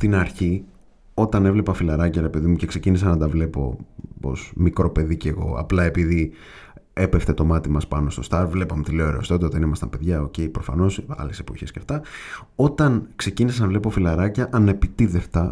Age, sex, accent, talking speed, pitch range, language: 30-49, male, native, 180 wpm, 80-110 Hz, Greek